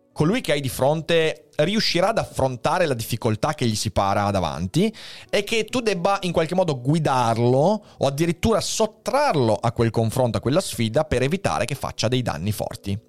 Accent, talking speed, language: native, 180 wpm, Italian